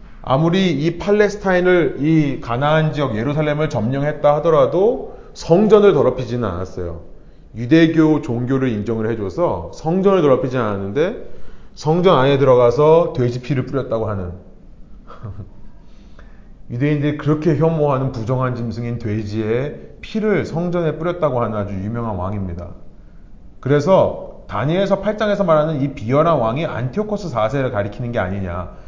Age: 30-49